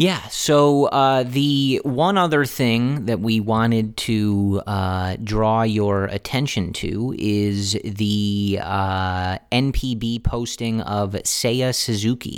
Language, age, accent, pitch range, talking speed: English, 30-49, American, 100-115 Hz, 115 wpm